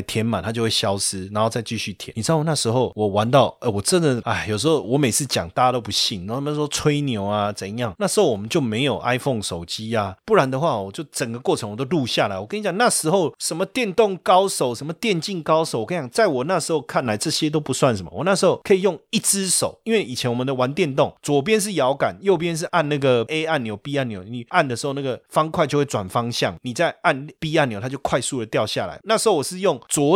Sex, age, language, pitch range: male, 30-49, Chinese, 110-165 Hz